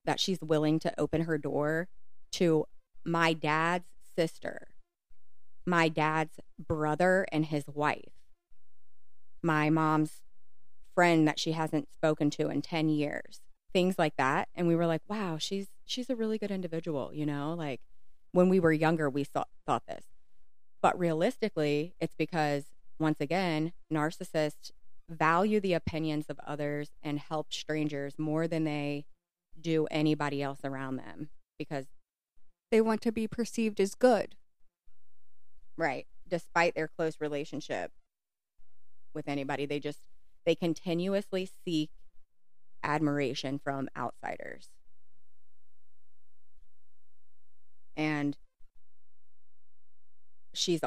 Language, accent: English, American